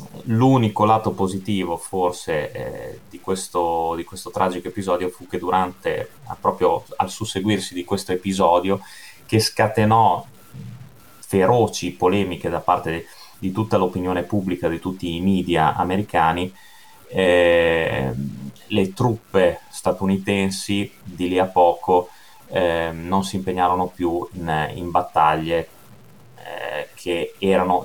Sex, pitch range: male, 85-100 Hz